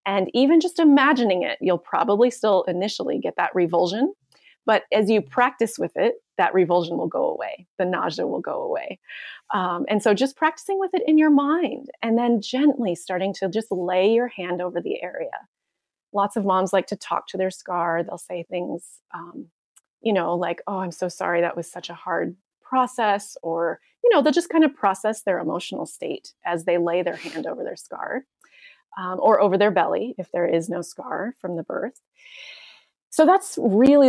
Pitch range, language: 180-255 Hz, English